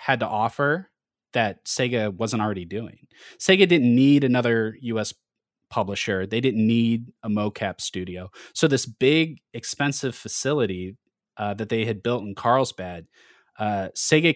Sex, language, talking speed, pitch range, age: male, English, 140 wpm, 100-125 Hz, 20-39